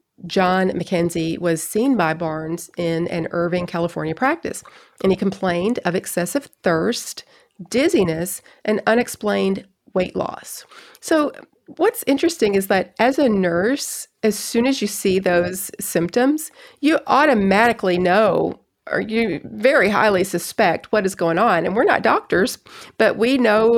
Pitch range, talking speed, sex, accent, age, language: 170-230 Hz, 140 wpm, female, American, 40-59, English